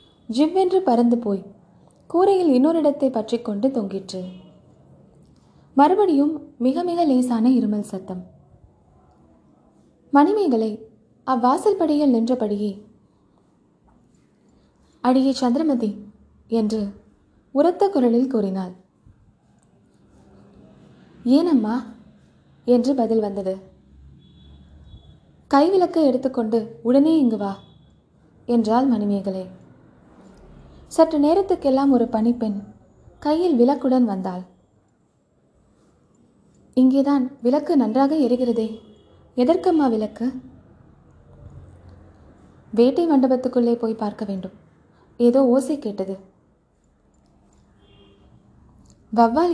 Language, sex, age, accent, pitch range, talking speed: Tamil, female, 20-39, native, 210-275 Hz, 70 wpm